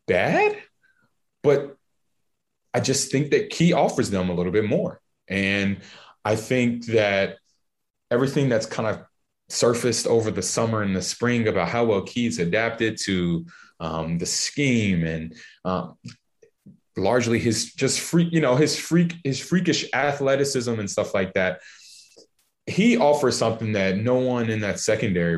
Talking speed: 150 wpm